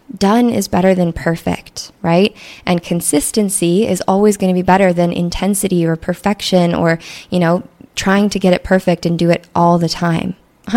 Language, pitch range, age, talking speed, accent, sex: English, 170-205 Hz, 20-39, 185 wpm, American, female